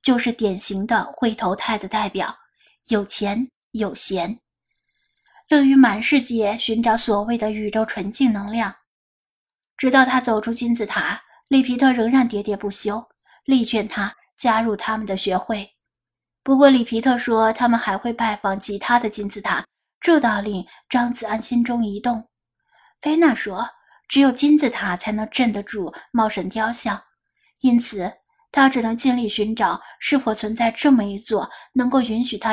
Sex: female